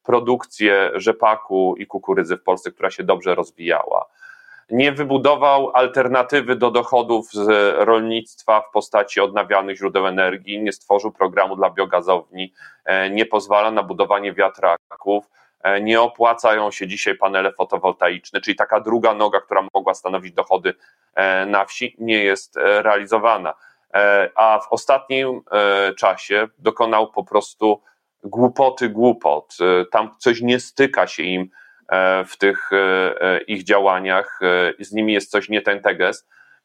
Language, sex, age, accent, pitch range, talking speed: Polish, male, 30-49, native, 95-115 Hz, 125 wpm